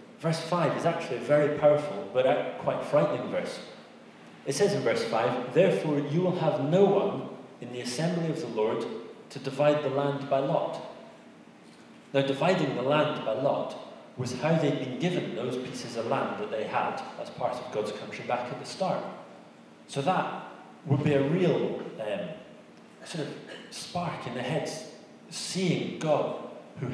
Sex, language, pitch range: male, English, 130-165 Hz